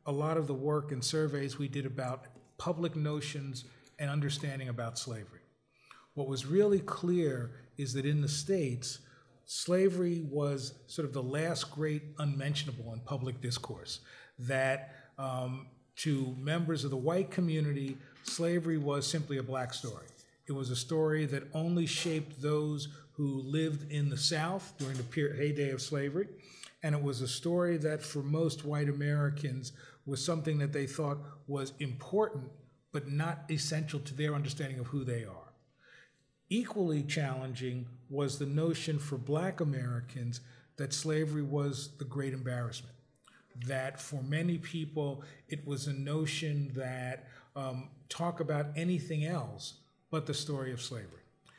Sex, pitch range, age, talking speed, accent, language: male, 135-155 Hz, 40-59, 150 wpm, American, English